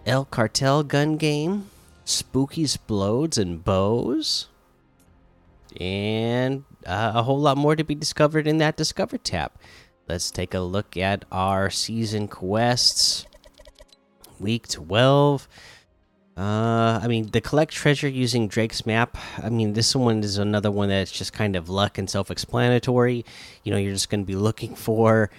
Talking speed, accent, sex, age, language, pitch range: 145 wpm, American, male, 30-49, English, 95-120 Hz